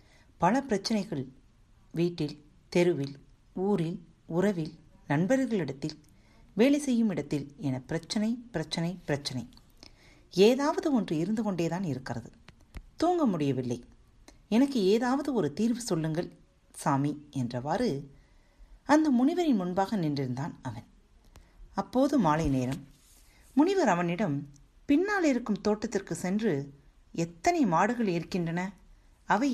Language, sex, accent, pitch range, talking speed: Tamil, female, native, 150-250 Hz, 95 wpm